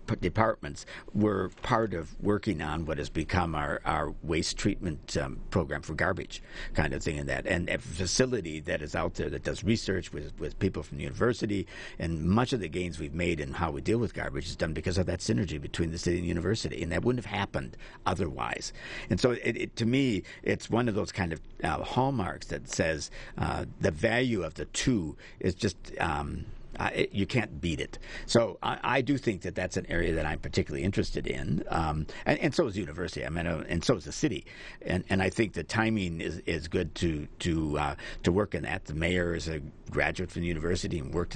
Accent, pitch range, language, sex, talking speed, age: American, 75-100 Hz, English, male, 225 wpm, 60-79